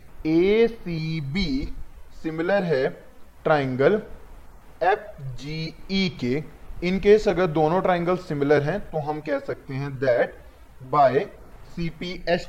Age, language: 20-39, Hindi